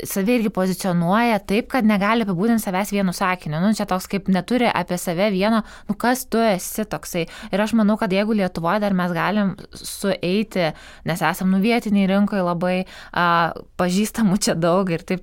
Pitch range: 170-200 Hz